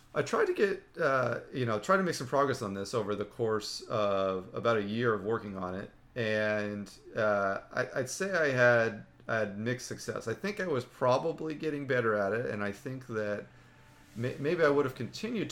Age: 40-59